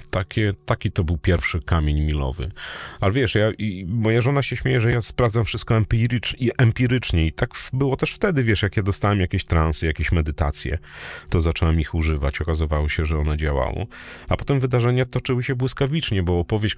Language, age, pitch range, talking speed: Polish, 30-49, 80-110 Hz, 170 wpm